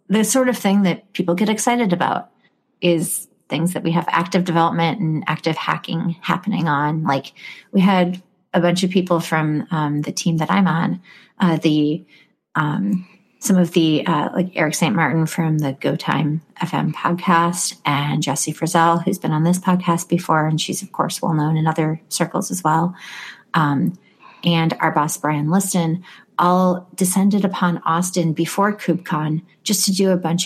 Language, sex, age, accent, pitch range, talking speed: English, female, 30-49, American, 160-190 Hz, 175 wpm